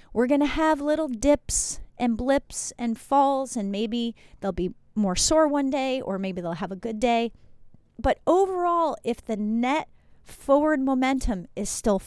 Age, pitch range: 30-49, 200-300 Hz